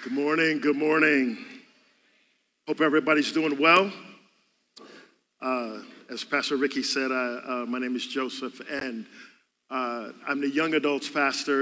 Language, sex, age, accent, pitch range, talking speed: English, male, 50-69, American, 140-225 Hz, 130 wpm